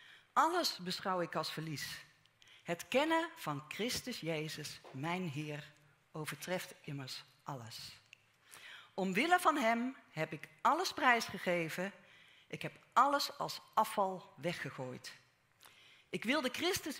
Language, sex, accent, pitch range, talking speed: Dutch, female, Dutch, 145-210 Hz, 110 wpm